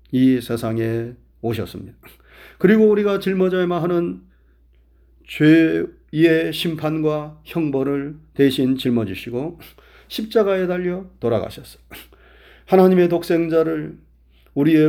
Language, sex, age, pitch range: Korean, male, 40-59, 115-175 Hz